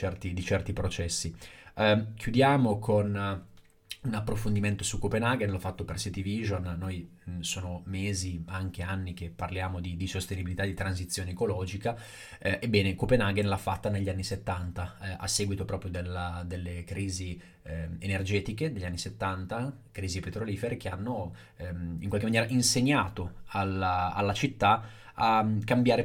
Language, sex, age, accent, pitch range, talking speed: Italian, male, 20-39, native, 95-110 Hz, 140 wpm